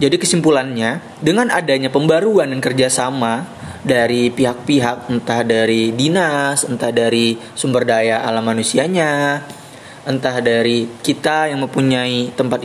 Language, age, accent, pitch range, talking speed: Indonesian, 20-39, native, 125-155 Hz, 115 wpm